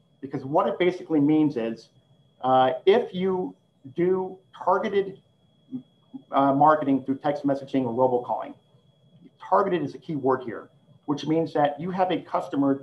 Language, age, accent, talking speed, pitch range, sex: English, 50-69, American, 145 wpm, 135-155 Hz, male